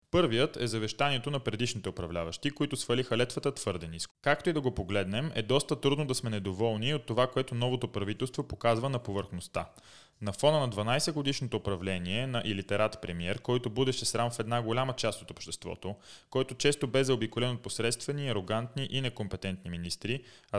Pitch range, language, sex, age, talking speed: 100-135 Hz, Bulgarian, male, 20-39, 170 wpm